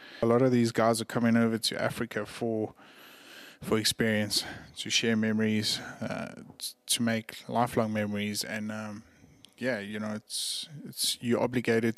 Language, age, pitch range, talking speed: English, 20-39, 105-115 Hz, 155 wpm